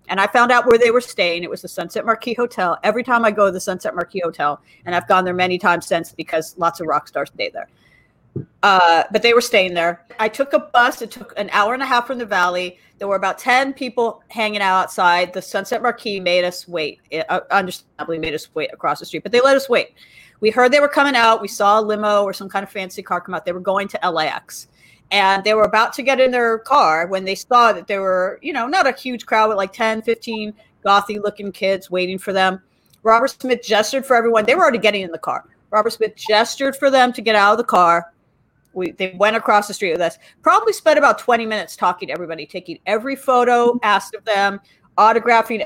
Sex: female